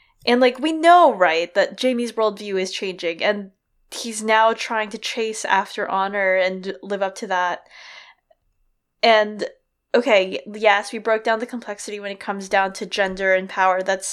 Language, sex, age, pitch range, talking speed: English, female, 20-39, 190-255 Hz, 170 wpm